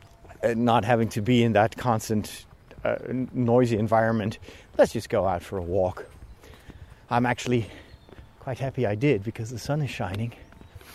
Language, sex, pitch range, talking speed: English, male, 105-140 Hz, 165 wpm